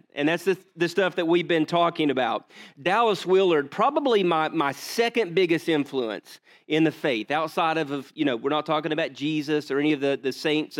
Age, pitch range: 40-59, 155-200 Hz